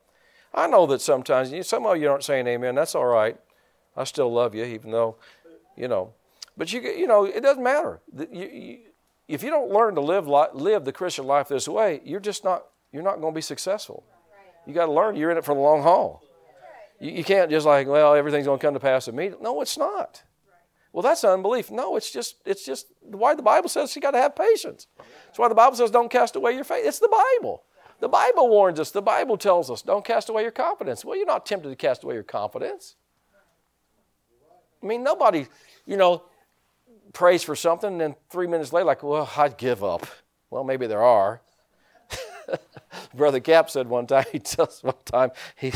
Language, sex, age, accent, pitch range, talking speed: English, male, 50-69, American, 140-220 Hz, 215 wpm